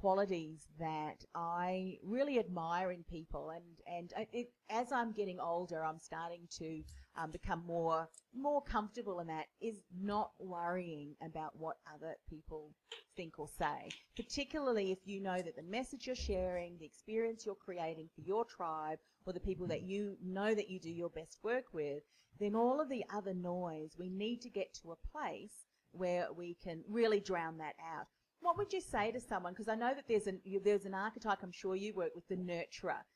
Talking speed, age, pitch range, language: 190 wpm, 40-59, 170-225 Hz, English